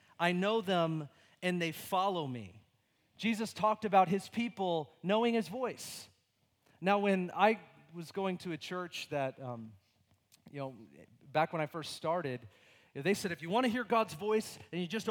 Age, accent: 40-59, American